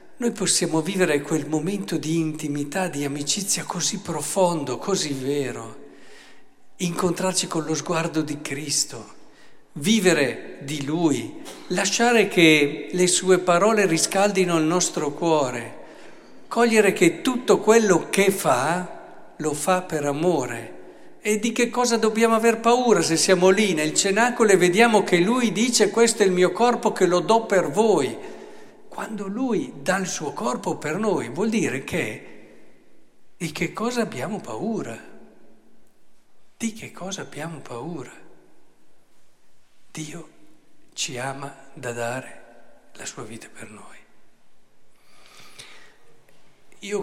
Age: 60-79